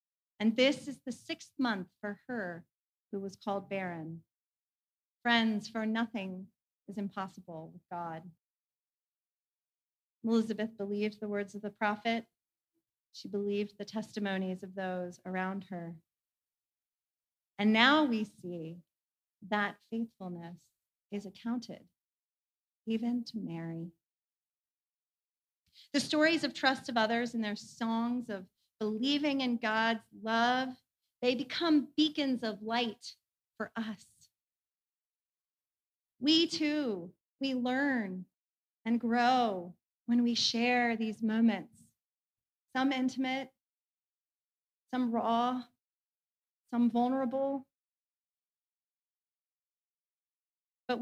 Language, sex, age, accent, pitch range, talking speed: English, female, 40-59, American, 195-255 Hz, 100 wpm